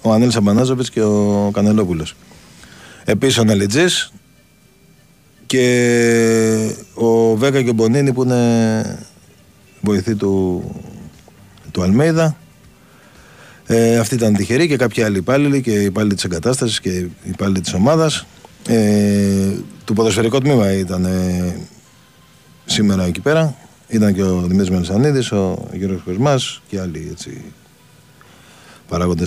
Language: Greek